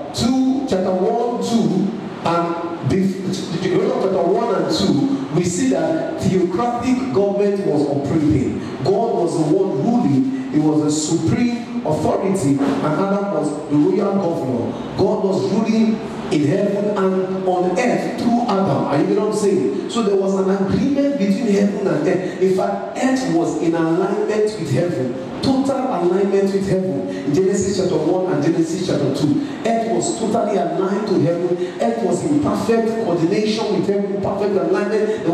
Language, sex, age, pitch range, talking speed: English, male, 40-59, 170-220 Hz, 160 wpm